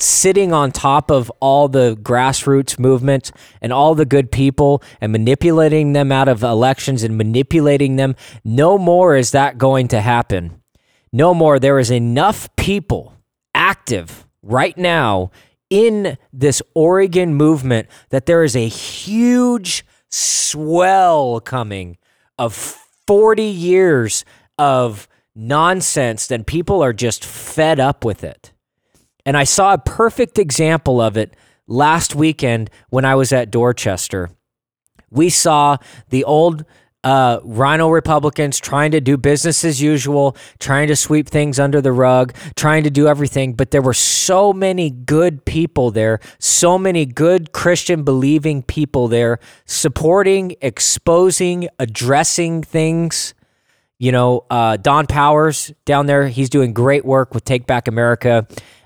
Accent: American